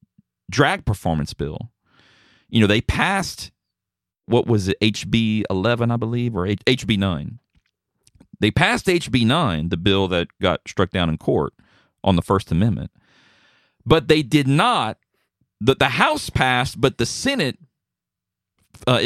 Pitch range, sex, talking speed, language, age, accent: 95-120 Hz, male, 145 wpm, English, 40-59, American